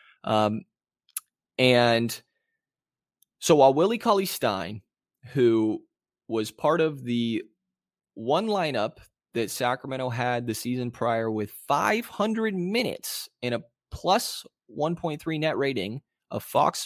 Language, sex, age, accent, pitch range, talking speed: English, male, 20-39, American, 110-135 Hz, 110 wpm